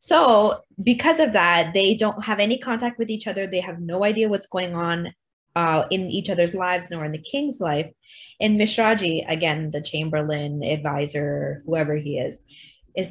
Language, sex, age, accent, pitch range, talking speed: English, female, 20-39, American, 175-245 Hz, 180 wpm